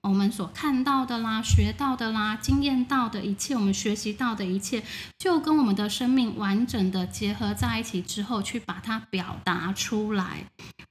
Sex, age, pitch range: female, 10-29, 195-260 Hz